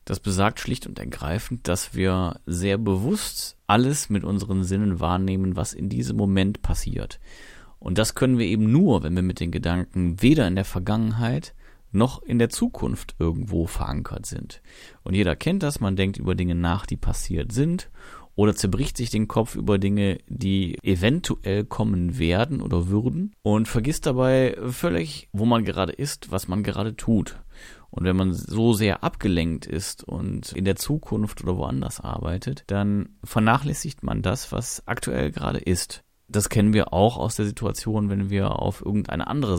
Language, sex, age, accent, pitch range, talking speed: German, male, 30-49, German, 90-120 Hz, 170 wpm